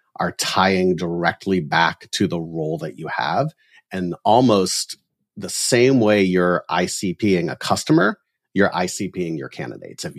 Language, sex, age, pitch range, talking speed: English, male, 40-59, 90-120 Hz, 140 wpm